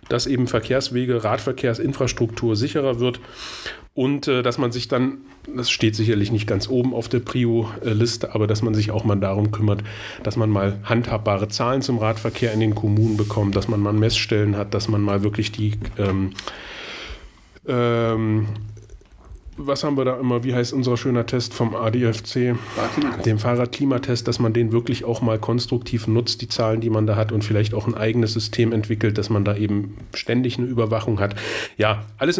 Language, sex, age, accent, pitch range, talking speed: German, male, 30-49, German, 110-140 Hz, 180 wpm